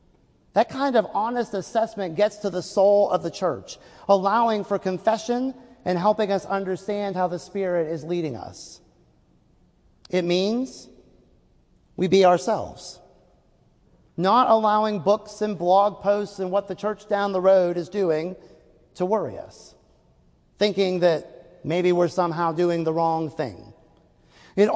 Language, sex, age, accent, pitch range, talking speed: English, male, 40-59, American, 175-205 Hz, 140 wpm